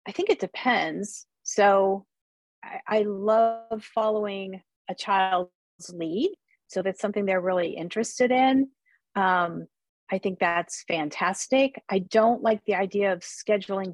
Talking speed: 135 wpm